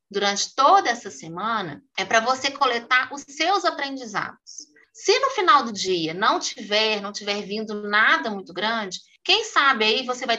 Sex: female